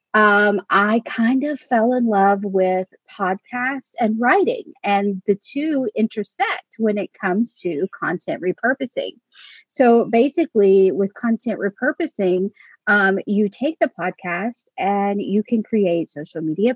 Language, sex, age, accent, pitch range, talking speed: English, female, 40-59, American, 195-235 Hz, 135 wpm